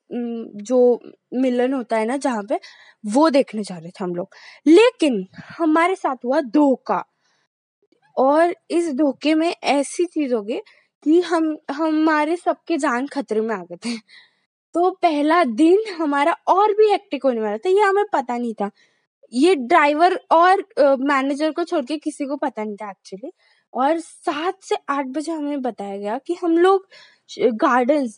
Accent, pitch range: native, 240-330 Hz